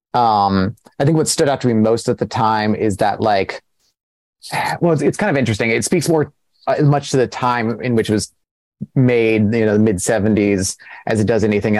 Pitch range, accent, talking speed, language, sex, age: 105-140 Hz, American, 215 wpm, English, male, 30-49